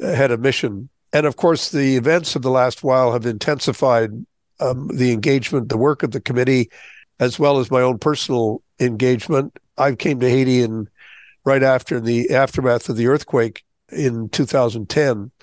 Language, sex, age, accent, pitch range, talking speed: English, male, 60-79, American, 120-145 Hz, 165 wpm